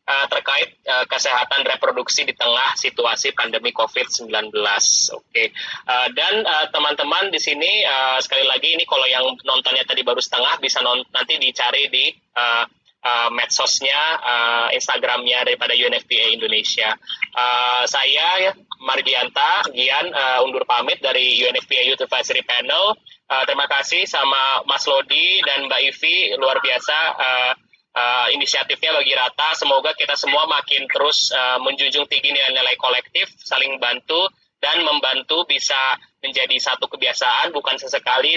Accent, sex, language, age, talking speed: native, male, Indonesian, 20-39, 140 wpm